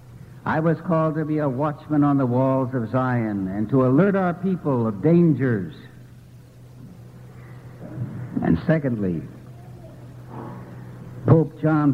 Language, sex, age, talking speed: English, male, 60-79, 115 wpm